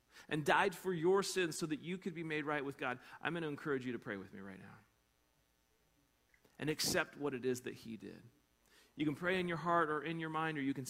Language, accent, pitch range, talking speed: English, American, 110-155 Hz, 255 wpm